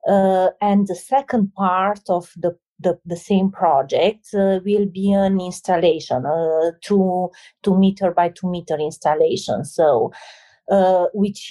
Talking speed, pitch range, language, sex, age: 145 wpm, 170-195 Hz, English, female, 30-49